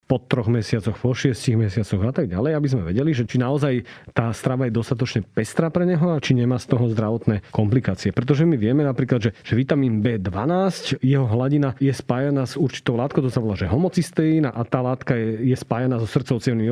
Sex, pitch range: male, 125-155 Hz